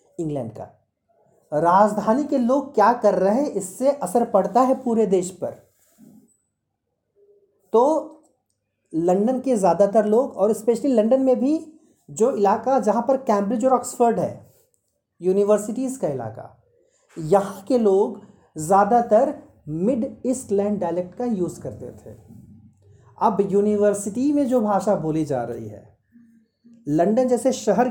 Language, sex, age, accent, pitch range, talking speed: Hindi, male, 40-59, native, 180-245 Hz, 130 wpm